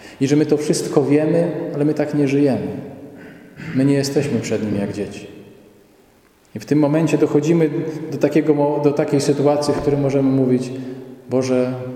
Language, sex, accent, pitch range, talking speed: Polish, male, native, 130-155 Hz, 160 wpm